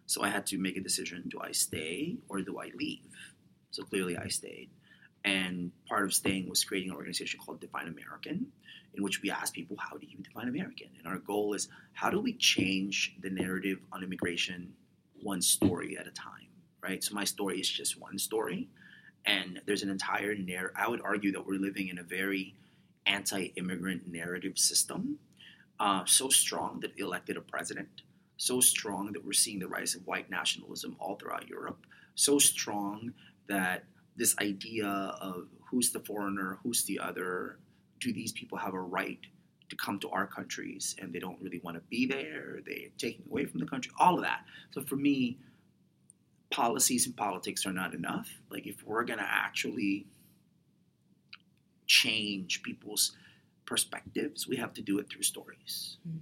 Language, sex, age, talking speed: English, male, 30-49, 175 wpm